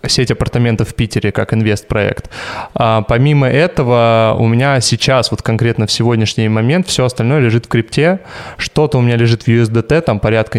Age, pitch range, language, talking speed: 20-39, 110-125 Hz, Russian, 170 wpm